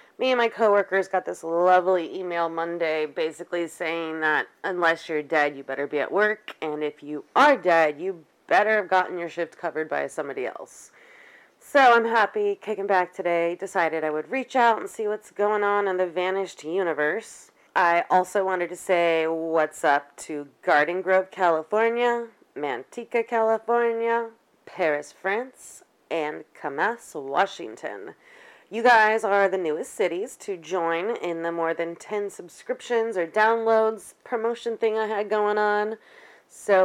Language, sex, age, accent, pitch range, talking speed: English, female, 30-49, American, 170-225 Hz, 160 wpm